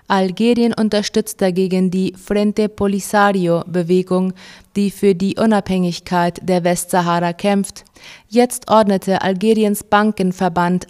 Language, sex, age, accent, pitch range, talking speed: German, female, 20-39, German, 180-210 Hz, 95 wpm